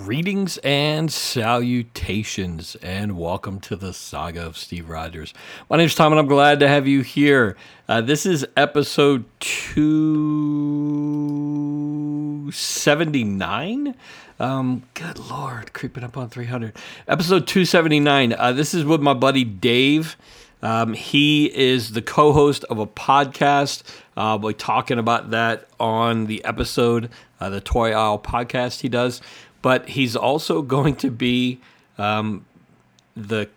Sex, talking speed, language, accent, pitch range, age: male, 130 wpm, English, American, 110-145 Hz, 50-69